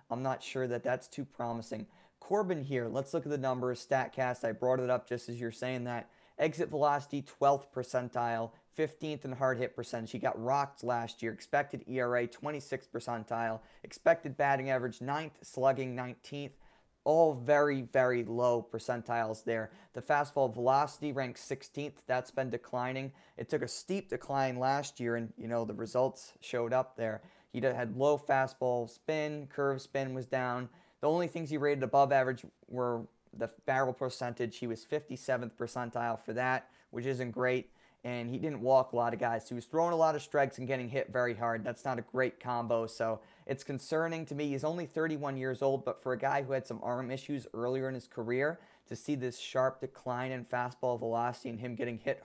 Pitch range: 120-140 Hz